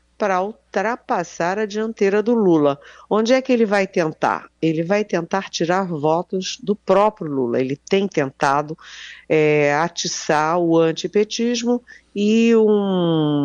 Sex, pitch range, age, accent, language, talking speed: female, 145-200 Hz, 50-69, Brazilian, Portuguese, 125 wpm